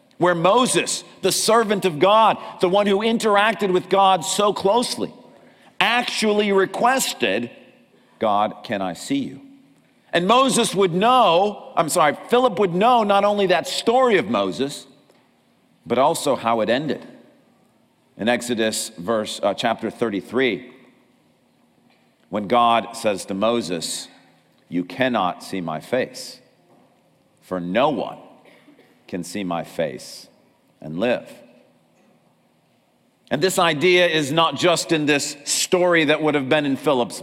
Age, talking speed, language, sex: 50-69, 130 wpm, English, male